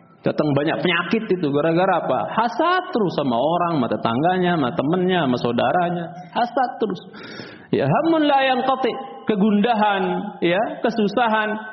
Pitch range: 150-195 Hz